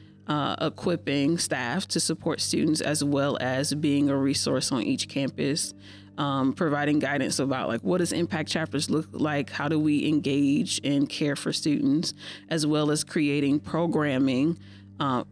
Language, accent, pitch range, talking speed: English, American, 140-165 Hz, 155 wpm